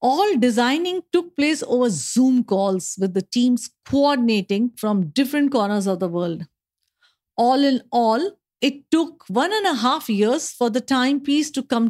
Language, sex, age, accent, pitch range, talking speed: English, female, 50-69, Indian, 210-280 Hz, 160 wpm